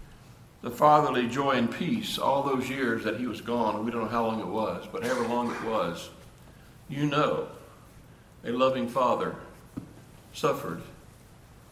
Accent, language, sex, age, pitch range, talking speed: American, English, male, 60-79, 115-155 Hz, 155 wpm